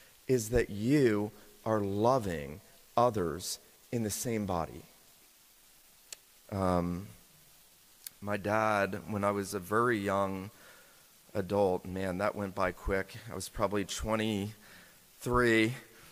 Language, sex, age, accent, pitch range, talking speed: English, male, 30-49, American, 100-120 Hz, 110 wpm